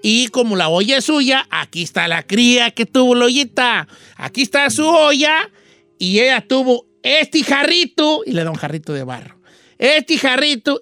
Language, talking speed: Spanish, 175 wpm